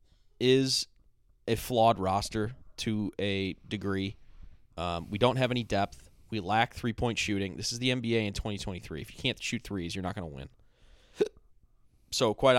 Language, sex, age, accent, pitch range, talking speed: English, male, 30-49, American, 95-125 Hz, 165 wpm